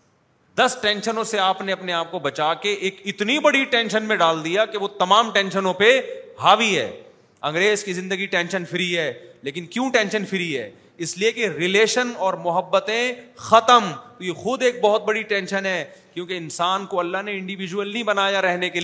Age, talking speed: 30-49, 185 wpm